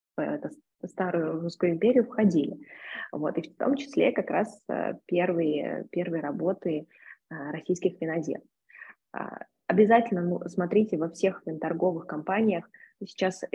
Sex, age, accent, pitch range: female, 20-39, native, 160-190 Hz